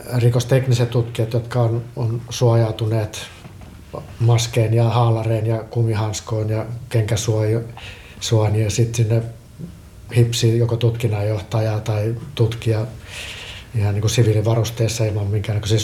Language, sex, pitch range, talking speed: Finnish, male, 105-120 Hz, 100 wpm